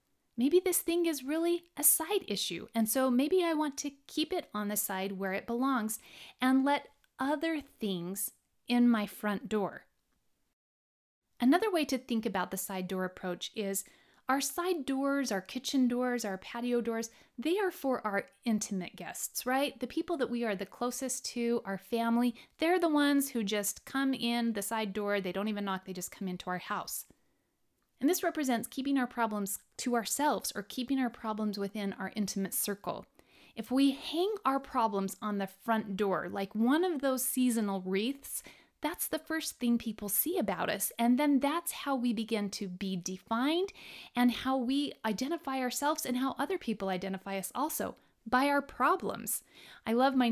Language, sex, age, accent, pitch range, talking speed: English, female, 30-49, American, 200-275 Hz, 180 wpm